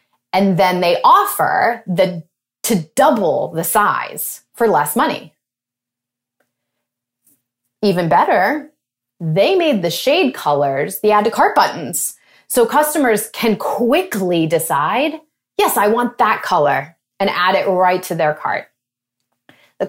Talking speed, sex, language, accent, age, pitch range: 125 wpm, female, English, American, 30-49, 155-240 Hz